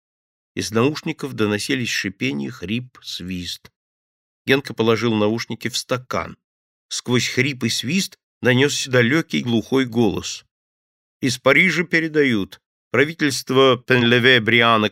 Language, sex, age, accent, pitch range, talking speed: Russian, male, 50-69, native, 105-150 Hz, 105 wpm